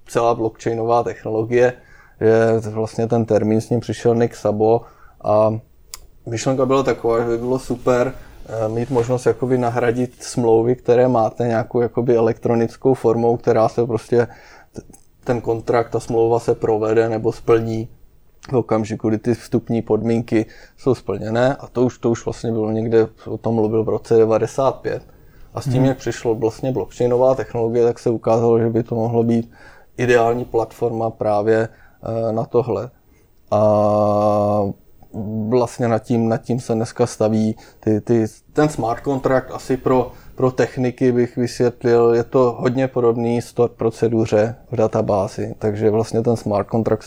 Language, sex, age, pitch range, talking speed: Czech, male, 20-39, 110-120 Hz, 150 wpm